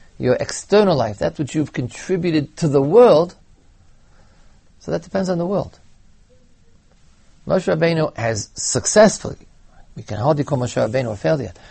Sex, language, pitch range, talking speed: male, English, 100-155 Hz, 145 wpm